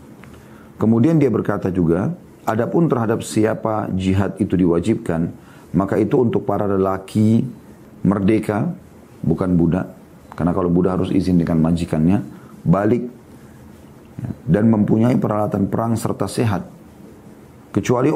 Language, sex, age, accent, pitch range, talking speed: Indonesian, male, 40-59, native, 90-105 Hz, 110 wpm